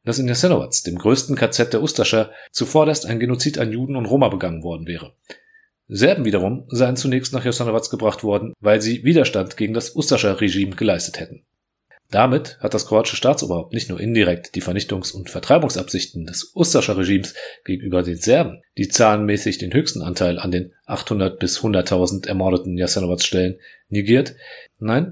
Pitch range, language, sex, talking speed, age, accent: 100-130 Hz, German, male, 155 wpm, 40-59, German